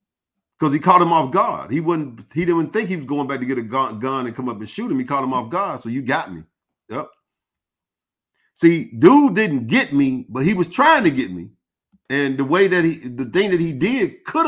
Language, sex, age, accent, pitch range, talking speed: English, male, 40-59, American, 110-165 Hz, 240 wpm